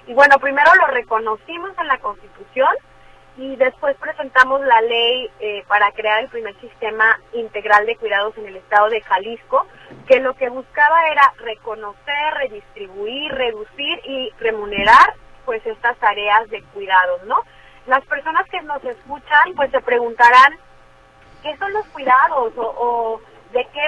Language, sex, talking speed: Spanish, female, 150 wpm